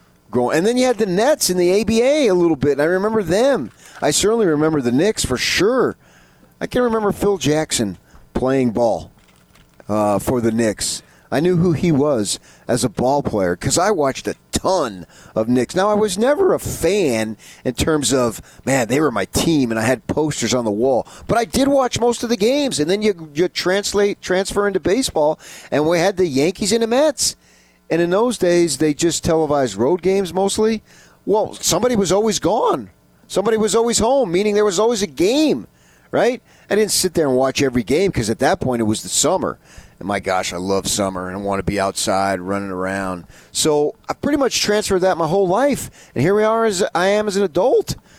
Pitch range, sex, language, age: 125-210 Hz, male, English, 40-59